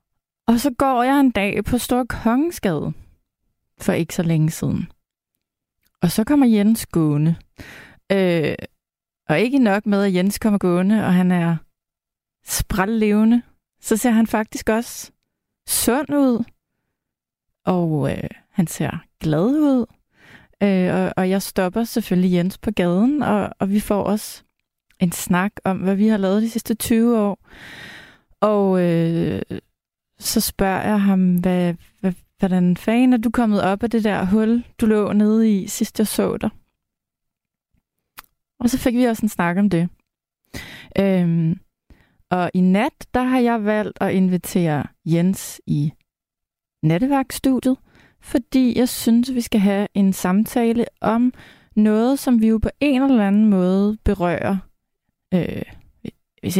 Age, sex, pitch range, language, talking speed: 30-49, female, 185-235 Hz, Danish, 140 wpm